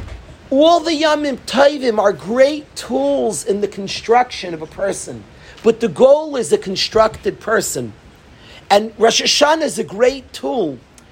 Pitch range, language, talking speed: 200-275 Hz, English, 145 wpm